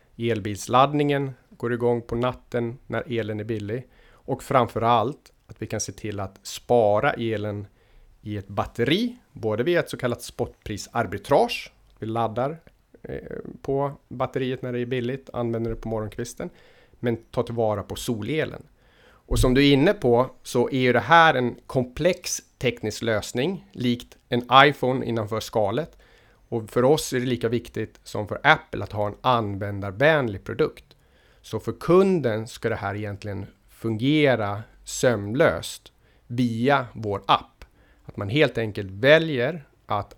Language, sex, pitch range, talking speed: Swedish, male, 110-130 Hz, 145 wpm